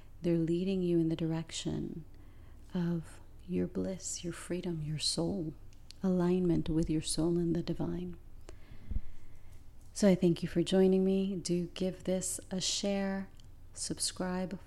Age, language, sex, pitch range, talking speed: 30-49, English, female, 160-180 Hz, 135 wpm